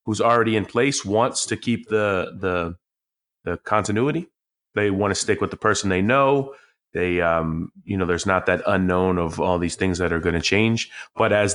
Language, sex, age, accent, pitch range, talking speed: English, male, 30-49, American, 95-115 Hz, 205 wpm